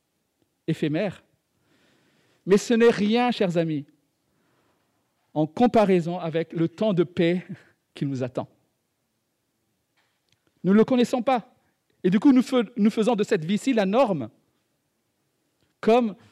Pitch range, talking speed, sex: 145-215 Hz, 120 wpm, male